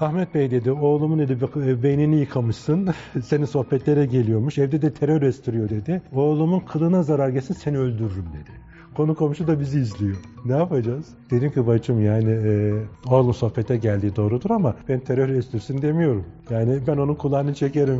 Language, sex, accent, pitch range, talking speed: Turkish, male, native, 115-150 Hz, 160 wpm